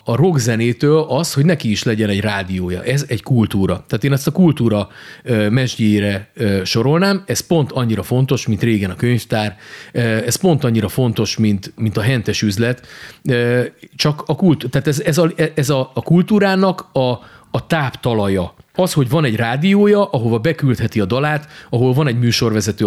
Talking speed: 165 wpm